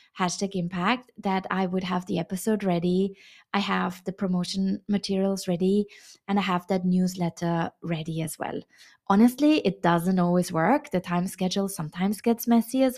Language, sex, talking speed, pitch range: English, female, 160 wpm, 180-215 Hz